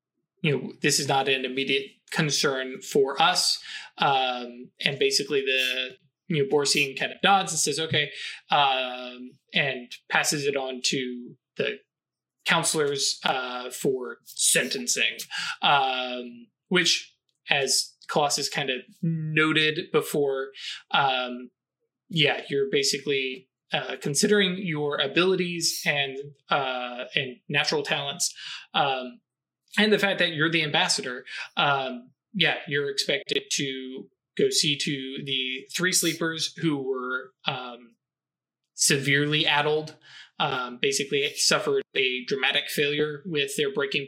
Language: English